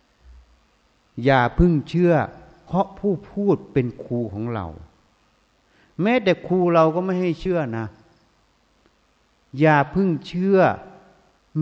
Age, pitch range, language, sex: 60-79, 115-160 Hz, Thai, male